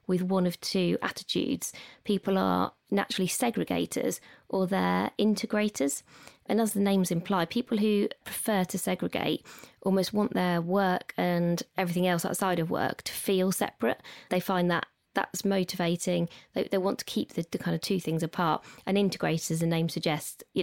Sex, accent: female, British